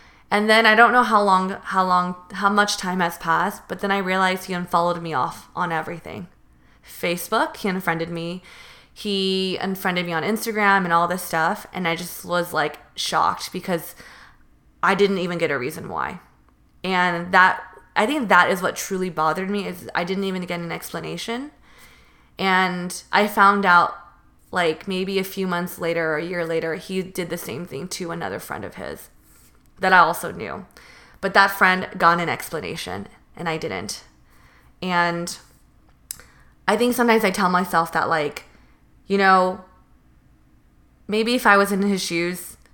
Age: 20-39